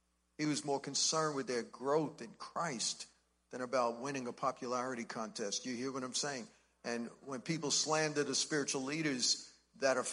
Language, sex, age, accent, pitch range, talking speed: English, male, 50-69, American, 115-190 Hz, 170 wpm